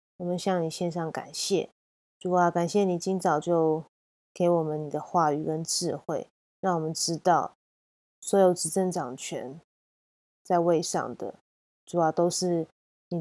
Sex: female